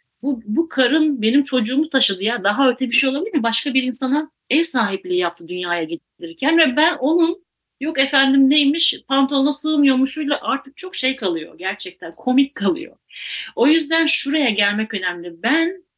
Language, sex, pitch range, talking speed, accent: Turkish, female, 210-275 Hz, 160 wpm, native